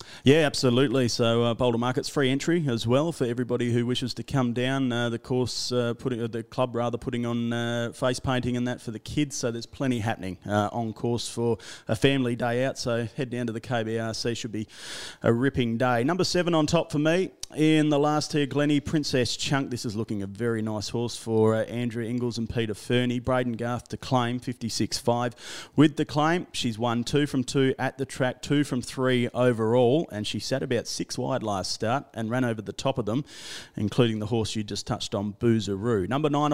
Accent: Australian